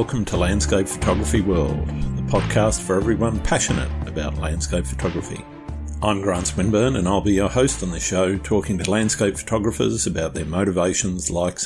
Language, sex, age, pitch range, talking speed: English, male, 50-69, 85-100 Hz, 165 wpm